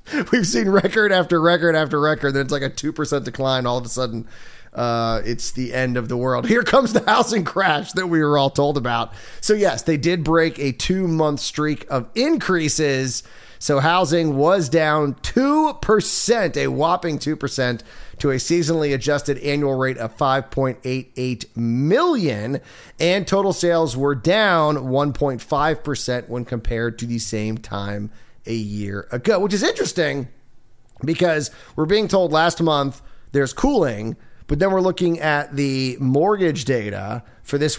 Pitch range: 120-165 Hz